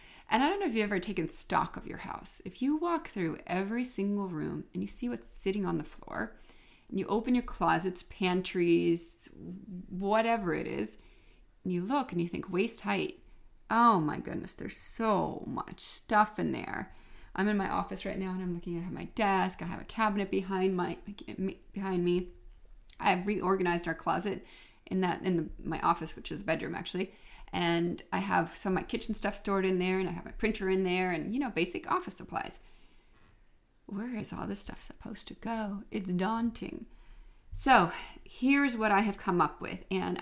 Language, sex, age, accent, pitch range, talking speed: English, female, 30-49, American, 175-210 Hz, 195 wpm